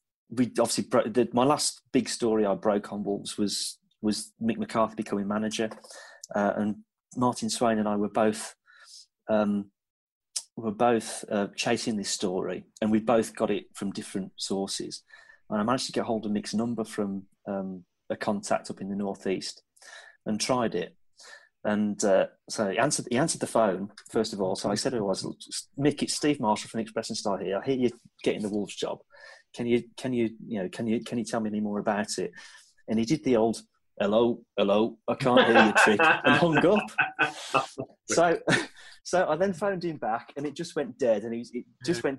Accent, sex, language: British, male, English